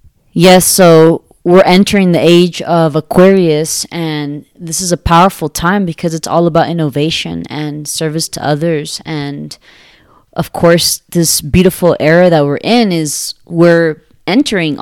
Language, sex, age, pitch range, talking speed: English, female, 20-39, 150-175 Hz, 140 wpm